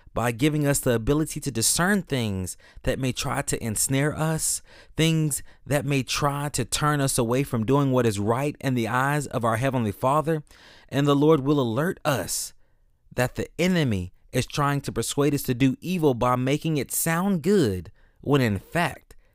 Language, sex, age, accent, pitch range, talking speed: English, male, 30-49, American, 115-155 Hz, 185 wpm